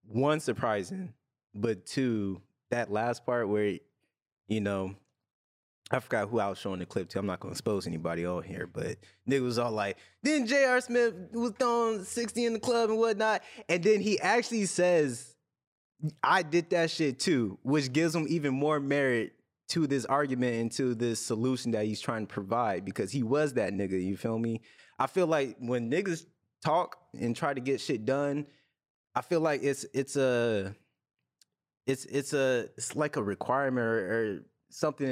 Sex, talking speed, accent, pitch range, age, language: male, 185 wpm, American, 110-150 Hz, 20-39, English